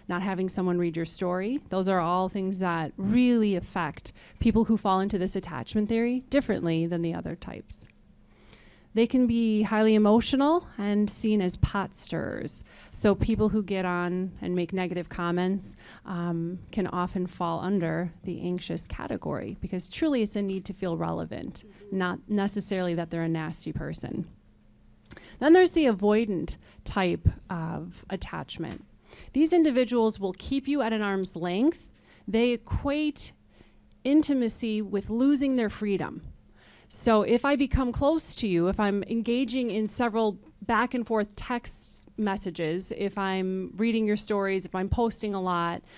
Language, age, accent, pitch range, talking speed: English, 30-49, American, 180-230 Hz, 155 wpm